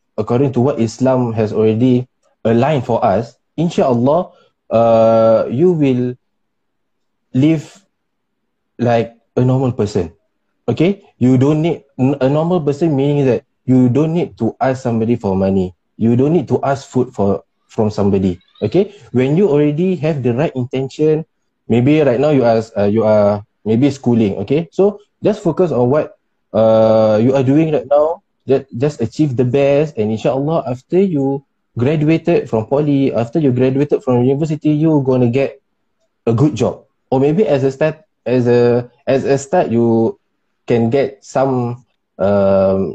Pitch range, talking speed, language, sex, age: 110-145 Hz, 155 wpm, Malay, male, 20-39